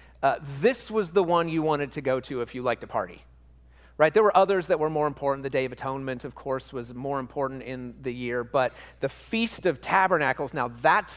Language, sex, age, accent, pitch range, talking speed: English, male, 30-49, American, 125-180 Hz, 225 wpm